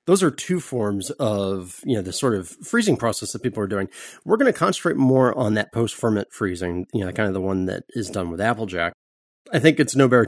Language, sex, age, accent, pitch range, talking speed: English, male, 30-49, American, 100-125 Hz, 240 wpm